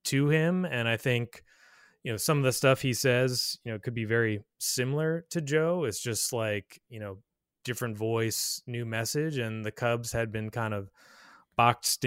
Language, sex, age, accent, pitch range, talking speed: English, male, 20-39, American, 105-125 Hz, 190 wpm